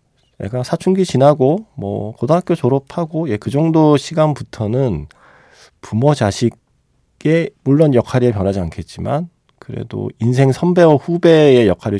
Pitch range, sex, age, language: 95-135 Hz, male, 40-59, Korean